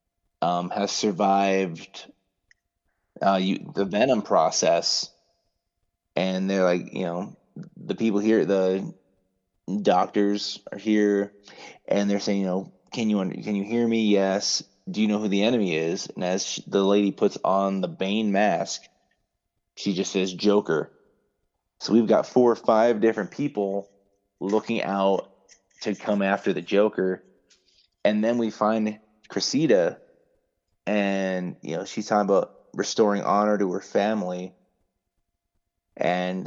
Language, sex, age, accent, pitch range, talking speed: English, male, 20-39, American, 95-105 Hz, 140 wpm